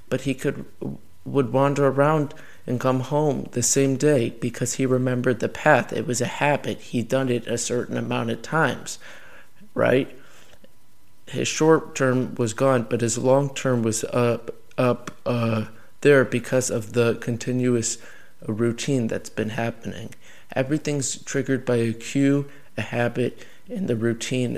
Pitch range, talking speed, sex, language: 115-130 Hz, 150 wpm, male, English